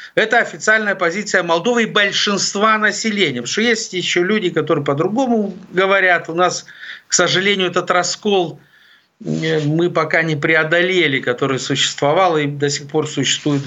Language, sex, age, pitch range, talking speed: Ukrainian, male, 50-69, 150-195 Hz, 135 wpm